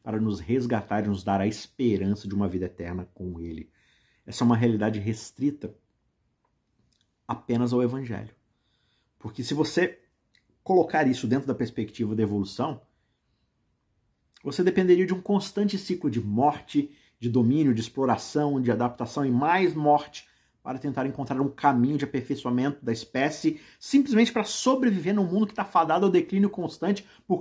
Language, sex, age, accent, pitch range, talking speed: Portuguese, male, 50-69, Brazilian, 115-155 Hz, 155 wpm